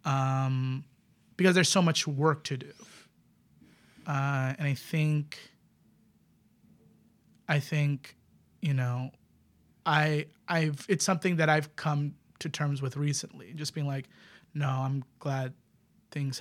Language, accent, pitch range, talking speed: English, American, 140-165 Hz, 125 wpm